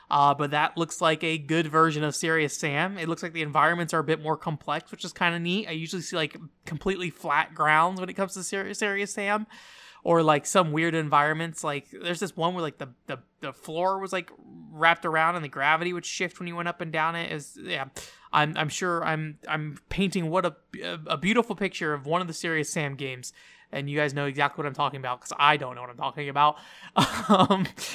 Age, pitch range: 20-39, 150-195 Hz